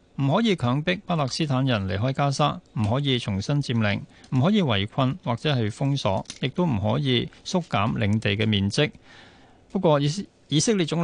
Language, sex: Chinese, male